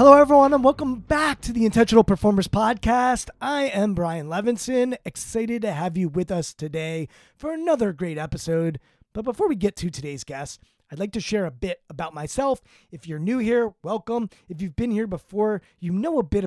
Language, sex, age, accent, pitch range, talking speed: English, male, 20-39, American, 175-245 Hz, 195 wpm